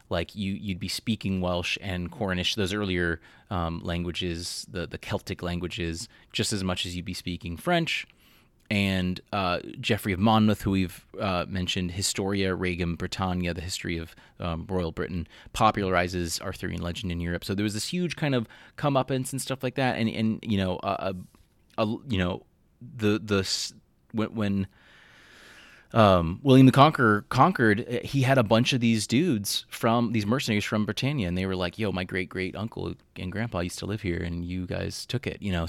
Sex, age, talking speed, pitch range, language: male, 30-49, 185 wpm, 90-115 Hz, English